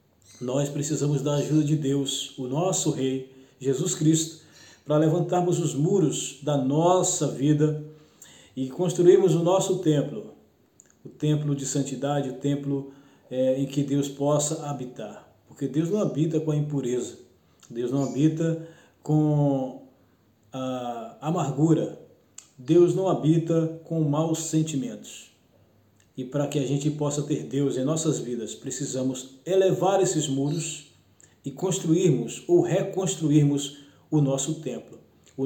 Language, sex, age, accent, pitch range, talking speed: Portuguese, male, 20-39, Brazilian, 135-160 Hz, 130 wpm